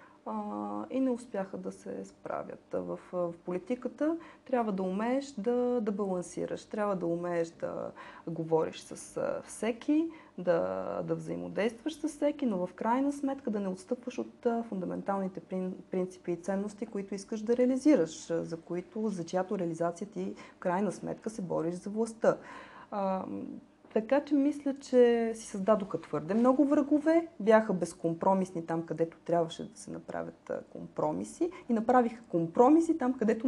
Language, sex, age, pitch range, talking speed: Bulgarian, female, 20-39, 185-250 Hz, 140 wpm